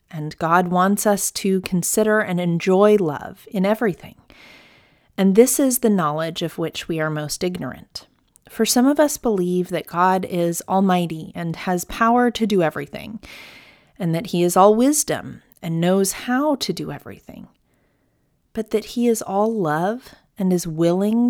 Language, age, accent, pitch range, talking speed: English, 30-49, American, 170-225 Hz, 165 wpm